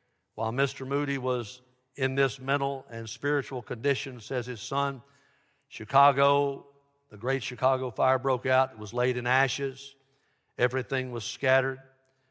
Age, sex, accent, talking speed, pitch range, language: 60-79, male, American, 135 wpm, 125-150 Hz, English